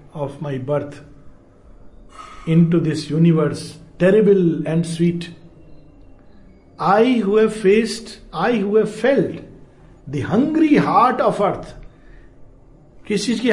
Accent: native